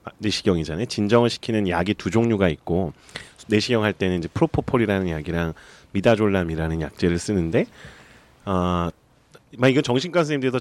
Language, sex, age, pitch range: Korean, male, 30-49, 85-115 Hz